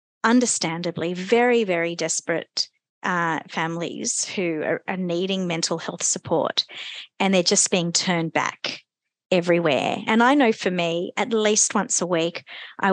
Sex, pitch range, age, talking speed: female, 170-230 Hz, 30-49, 140 wpm